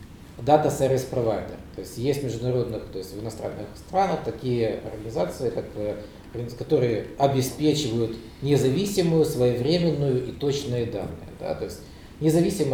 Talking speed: 115 wpm